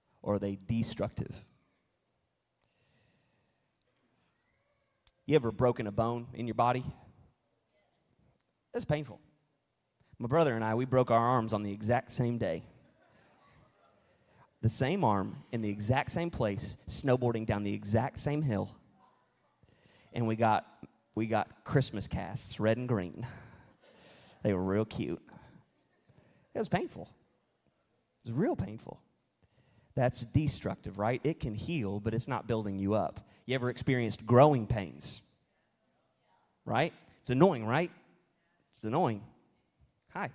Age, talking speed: 30-49, 130 wpm